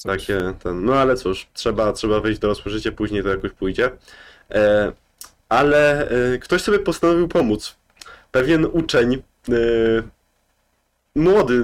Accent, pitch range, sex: native, 105-145 Hz, male